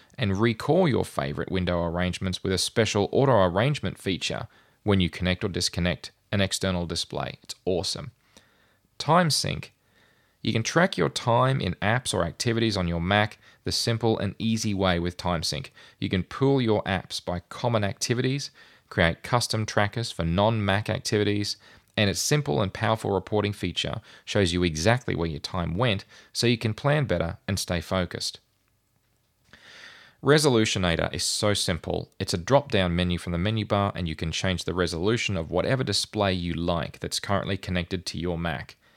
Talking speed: 165 wpm